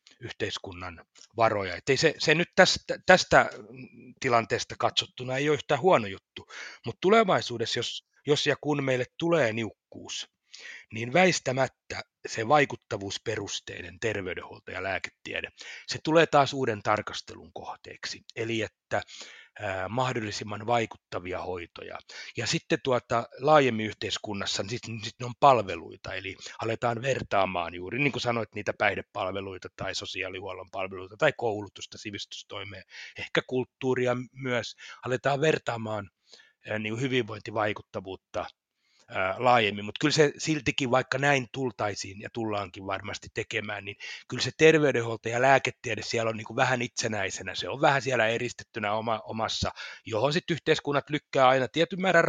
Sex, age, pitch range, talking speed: male, 30-49, 110-145 Hz, 125 wpm